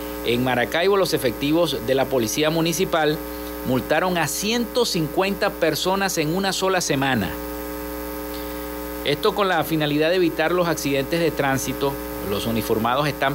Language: Spanish